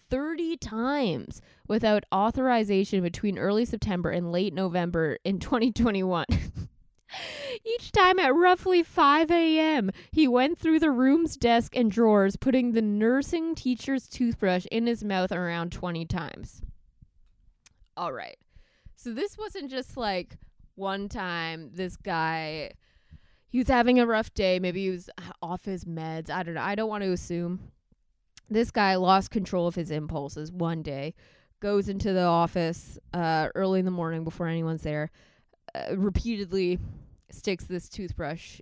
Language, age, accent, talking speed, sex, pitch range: English, 20-39, American, 145 wpm, female, 180-250 Hz